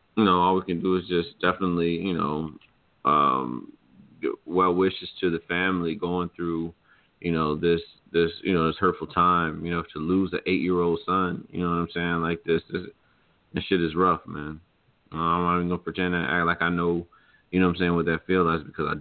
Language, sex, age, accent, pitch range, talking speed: English, male, 30-49, American, 85-90 Hz, 220 wpm